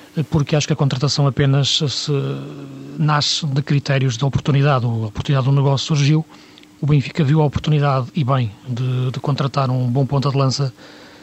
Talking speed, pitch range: 160 wpm, 135-155 Hz